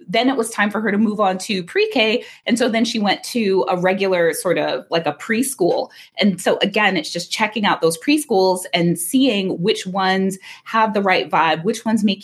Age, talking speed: 20-39, 215 wpm